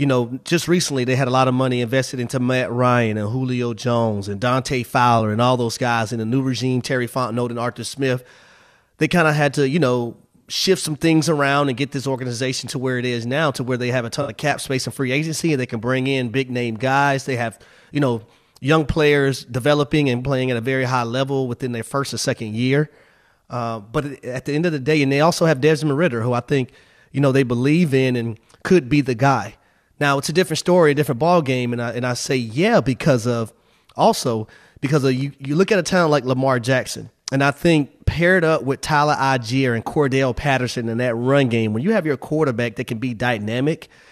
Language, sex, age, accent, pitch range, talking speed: English, male, 30-49, American, 125-150 Hz, 235 wpm